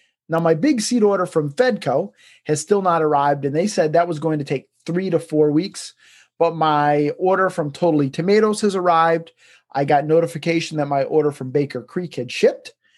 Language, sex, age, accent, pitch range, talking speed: English, male, 30-49, American, 145-200 Hz, 195 wpm